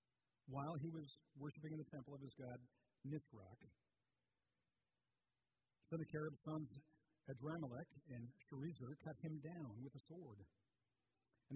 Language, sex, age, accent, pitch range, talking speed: English, male, 60-79, American, 120-155 Hz, 125 wpm